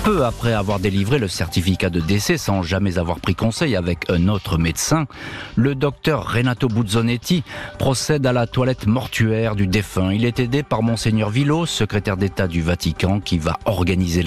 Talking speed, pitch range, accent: 175 wpm, 90-120 Hz, French